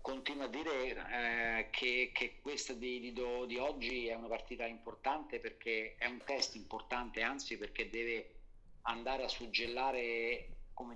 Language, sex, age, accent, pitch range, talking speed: Italian, male, 50-69, native, 110-130 Hz, 140 wpm